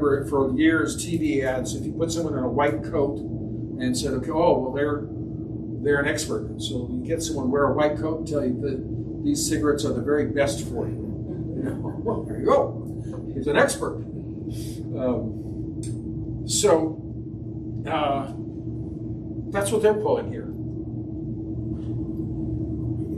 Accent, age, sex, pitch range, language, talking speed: American, 50-69, male, 110-145 Hz, English, 150 wpm